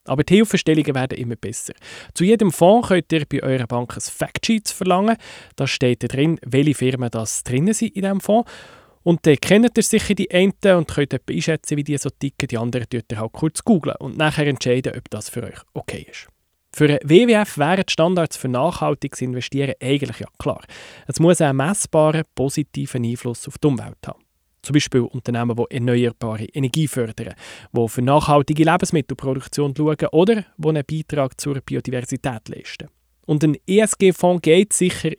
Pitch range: 130-175 Hz